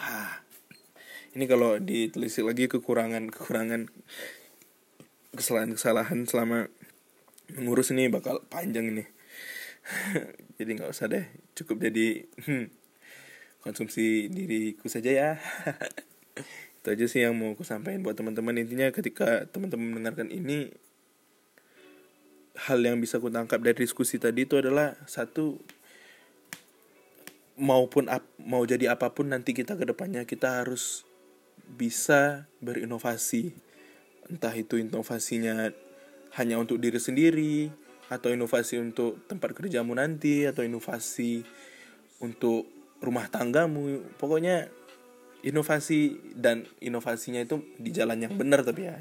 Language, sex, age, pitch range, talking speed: Indonesian, male, 20-39, 115-135 Hz, 110 wpm